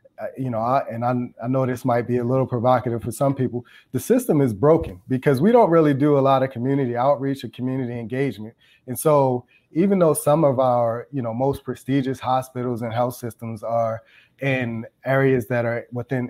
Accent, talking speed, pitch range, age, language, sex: American, 200 wpm, 120-135 Hz, 30-49, English, male